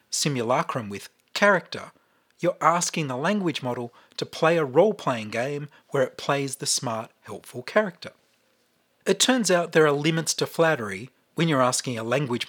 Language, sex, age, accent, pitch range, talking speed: English, male, 40-59, Australian, 130-180 Hz, 160 wpm